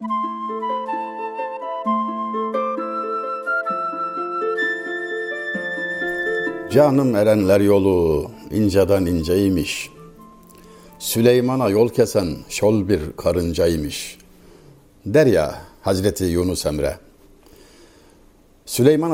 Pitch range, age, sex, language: 105-165 Hz, 60-79, male, Turkish